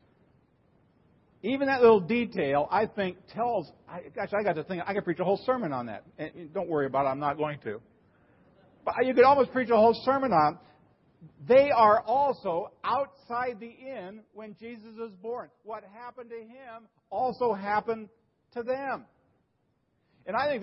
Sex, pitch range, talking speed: male, 165-225 Hz, 175 wpm